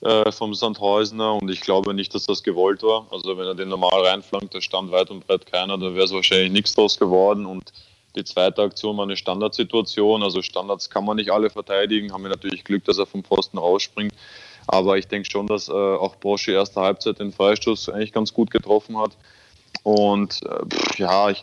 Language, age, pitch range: German, 20-39, 95-110 Hz